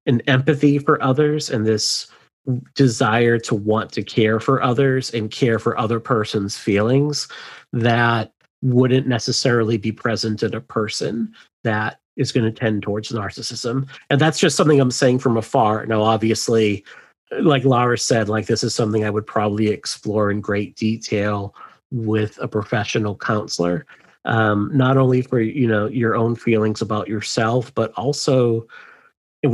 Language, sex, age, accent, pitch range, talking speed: English, male, 30-49, American, 105-125 Hz, 155 wpm